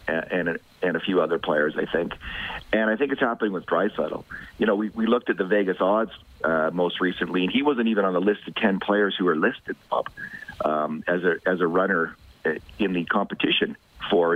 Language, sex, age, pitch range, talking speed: English, male, 50-69, 90-130 Hz, 215 wpm